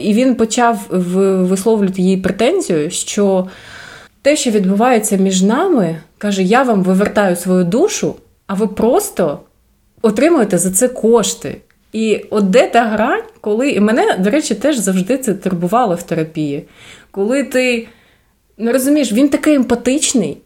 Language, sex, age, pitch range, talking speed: Ukrainian, female, 30-49, 195-260 Hz, 145 wpm